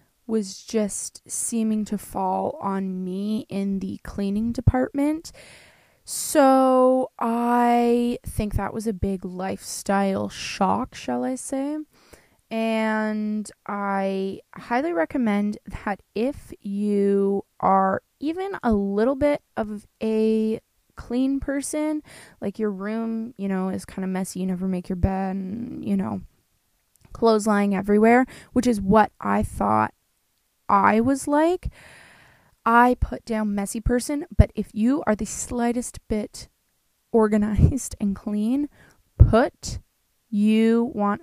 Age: 20-39